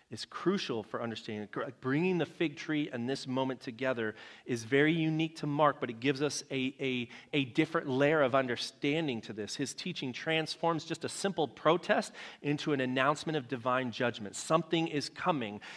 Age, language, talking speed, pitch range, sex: 30-49, English, 175 wpm, 125-170 Hz, male